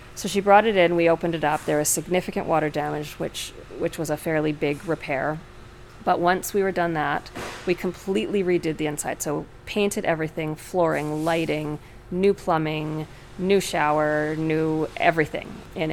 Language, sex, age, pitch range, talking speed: English, female, 30-49, 145-175 Hz, 165 wpm